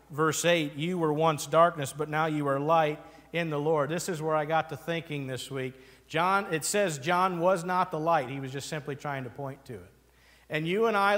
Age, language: 50-69, English